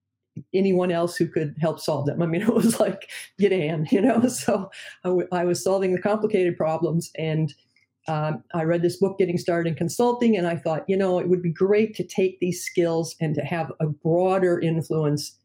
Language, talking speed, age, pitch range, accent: English, 205 wpm, 50-69, 160-195 Hz, American